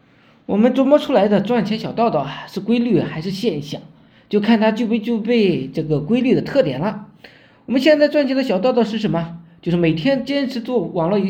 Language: Chinese